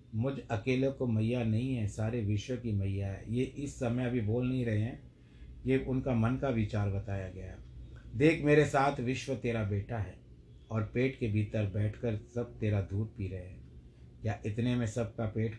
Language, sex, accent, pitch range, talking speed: Hindi, male, native, 105-130 Hz, 190 wpm